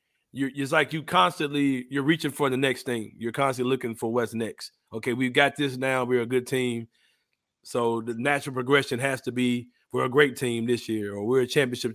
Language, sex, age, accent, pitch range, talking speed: English, male, 30-49, American, 120-150 Hz, 210 wpm